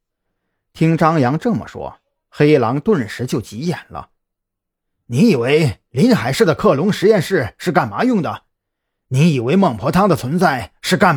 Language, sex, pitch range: Chinese, male, 125-190 Hz